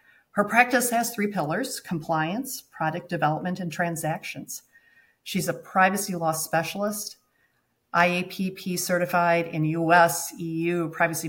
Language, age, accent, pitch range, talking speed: English, 40-59, American, 150-175 Hz, 105 wpm